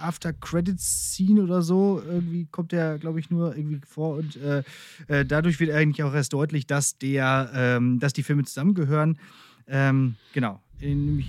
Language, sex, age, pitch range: German, male, 30-49, 150-185 Hz